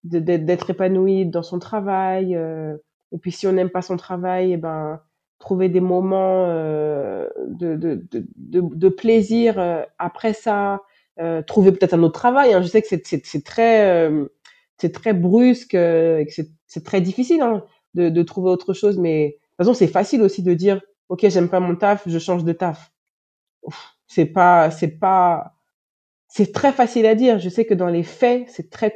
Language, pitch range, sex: French, 170-205 Hz, female